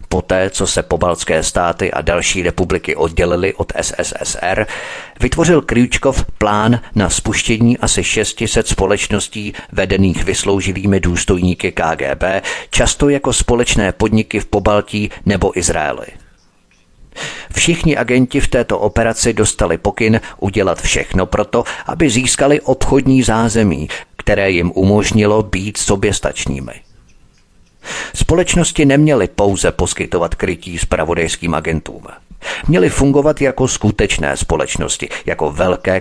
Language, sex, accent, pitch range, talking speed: Czech, male, native, 95-120 Hz, 105 wpm